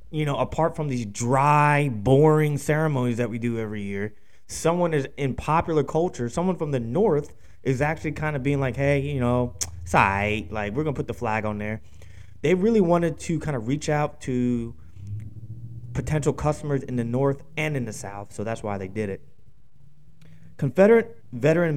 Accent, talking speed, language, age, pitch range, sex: American, 185 wpm, English, 20-39, 115-150 Hz, male